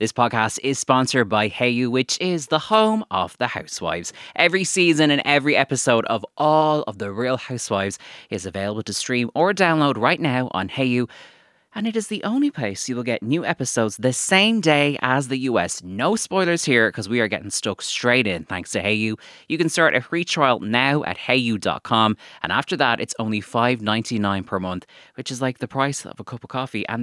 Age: 20-39